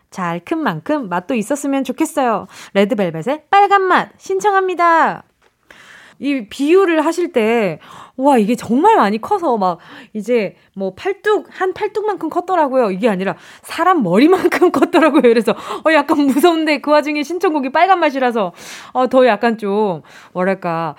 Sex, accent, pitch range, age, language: female, native, 195-315 Hz, 20-39, Korean